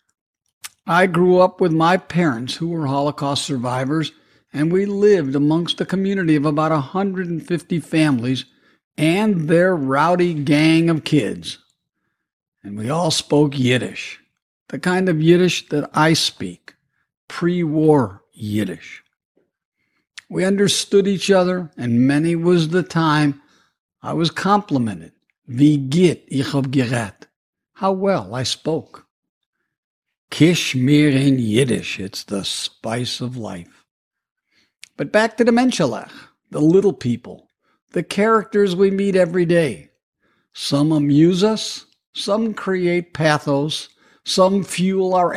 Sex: male